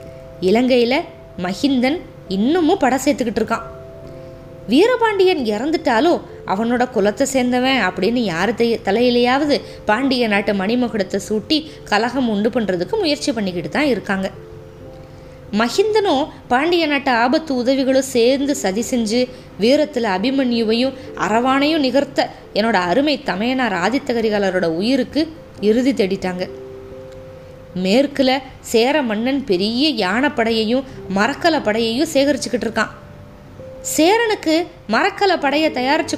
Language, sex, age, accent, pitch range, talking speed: Tamil, female, 20-39, native, 205-275 Hz, 95 wpm